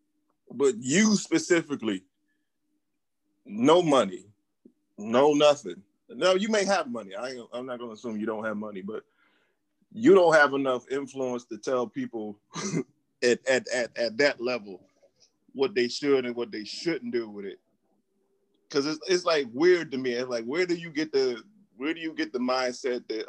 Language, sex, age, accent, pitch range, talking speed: English, male, 20-39, American, 115-155 Hz, 175 wpm